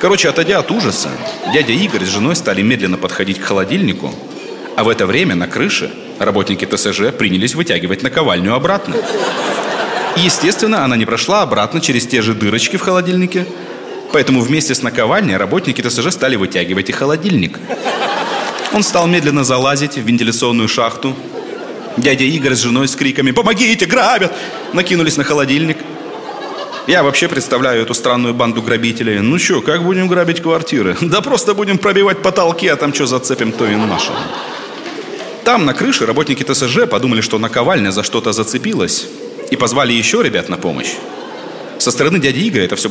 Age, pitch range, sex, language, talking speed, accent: 30-49, 115-165 Hz, male, Russian, 160 wpm, native